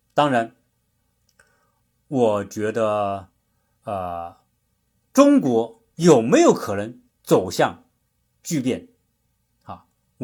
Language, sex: Chinese, male